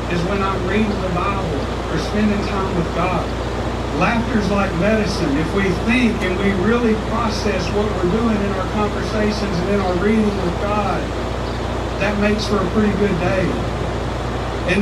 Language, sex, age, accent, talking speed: English, male, 40-59, American, 165 wpm